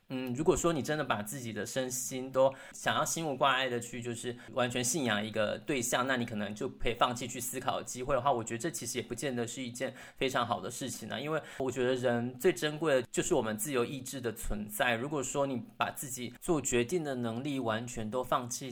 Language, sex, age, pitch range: Chinese, male, 20-39, 115-140 Hz